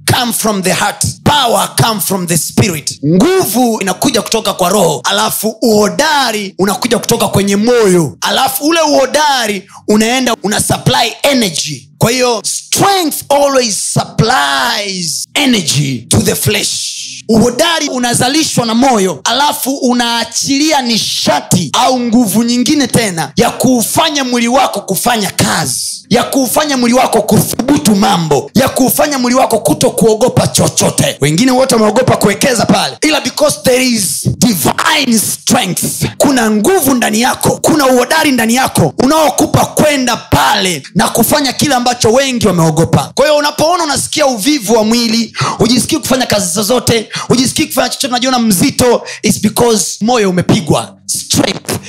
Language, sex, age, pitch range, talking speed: Swahili, male, 30-49, 195-265 Hz, 130 wpm